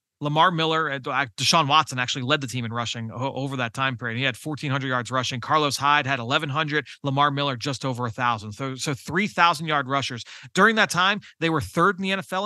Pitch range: 125-160 Hz